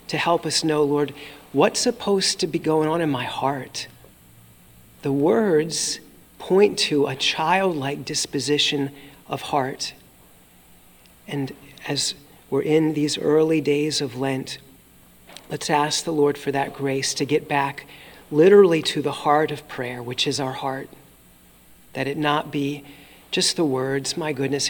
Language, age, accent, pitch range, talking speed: English, 40-59, American, 135-155 Hz, 150 wpm